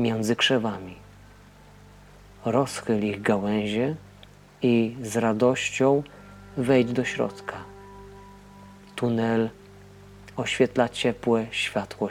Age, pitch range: 40-59, 100-125 Hz